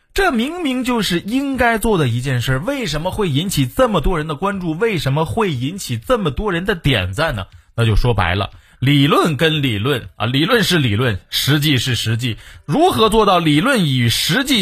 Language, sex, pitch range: Chinese, male, 115-185 Hz